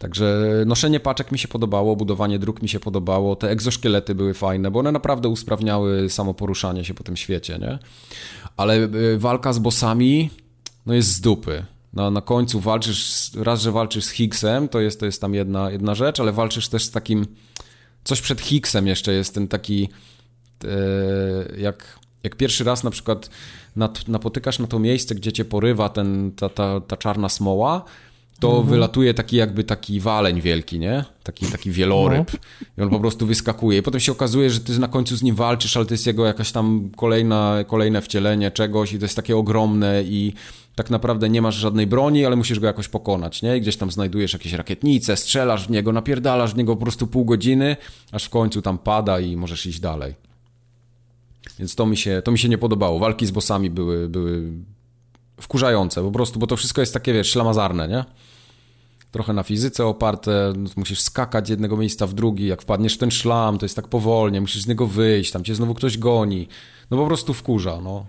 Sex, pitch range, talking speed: male, 100-120 Hz, 200 wpm